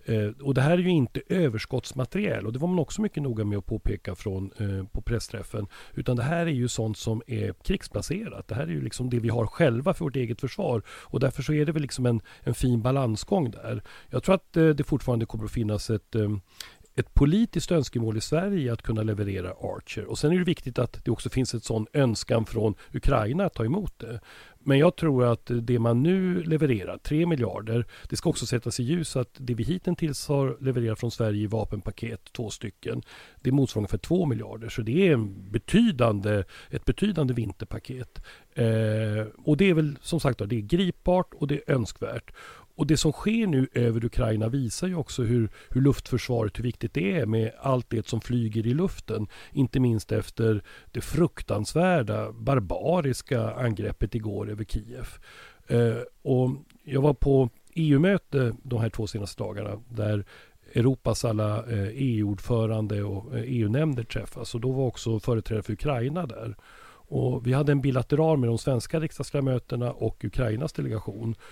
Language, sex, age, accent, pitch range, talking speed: Swedish, male, 40-59, native, 110-140 Hz, 185 wpm